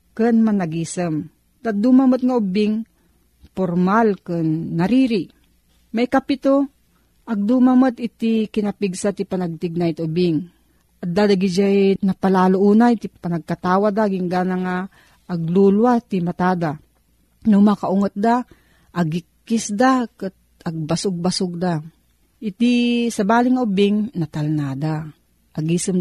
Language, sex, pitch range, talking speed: Filipino, female, 175-225 Hz, 110 wpm